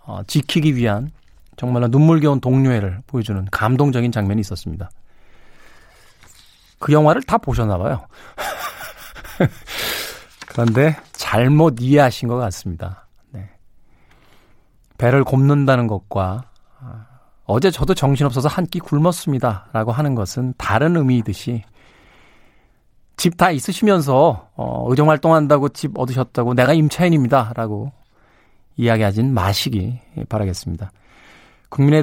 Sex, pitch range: male, 110-150 Hz